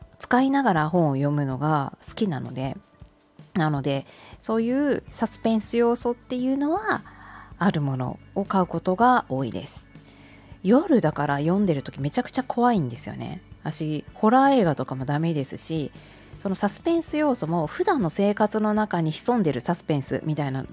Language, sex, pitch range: Japanese, female, 150-240 Hz